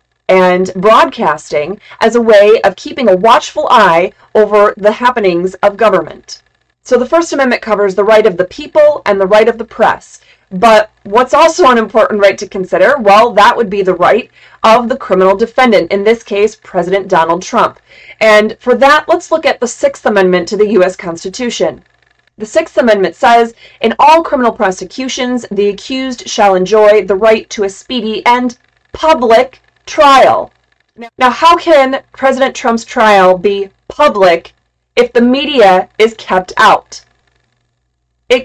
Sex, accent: female, American